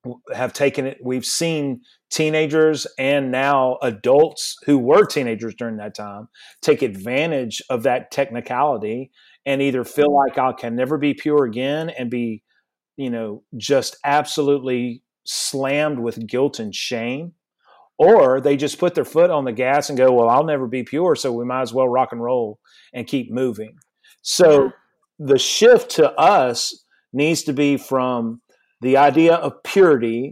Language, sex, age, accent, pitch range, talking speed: English, male, 40-59, American, 125-145 Hz, 160 wpm